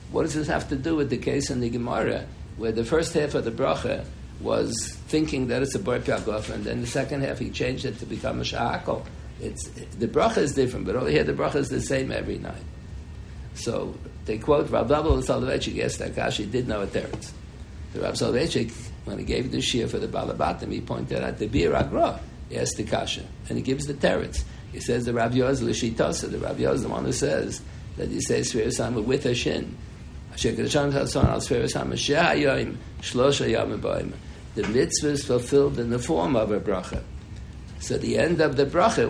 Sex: male